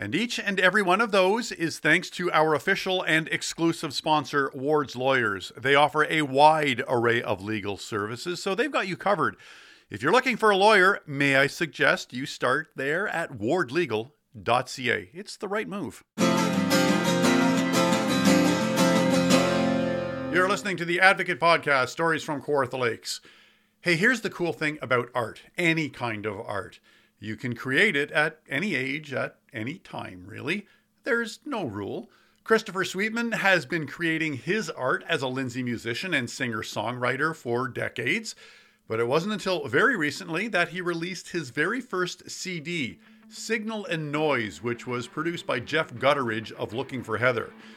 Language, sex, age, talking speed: English, male, 50-69, 155 wpm